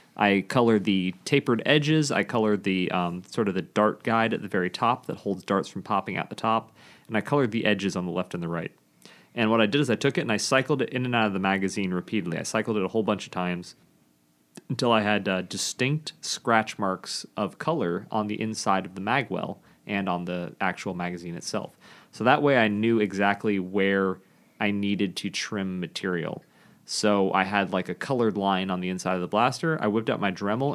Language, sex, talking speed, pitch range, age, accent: English, male, 225 wpm, 90-115 Hz, 30-49, American